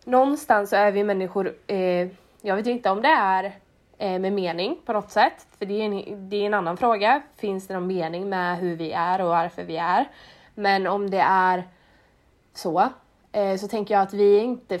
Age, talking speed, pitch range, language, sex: 20-39, 185 wpm, 180-215 Hz, English, female